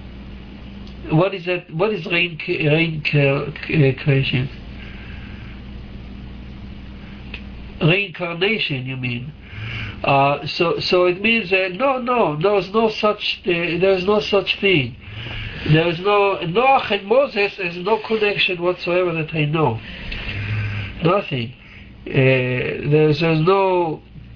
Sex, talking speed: male, 115 wpm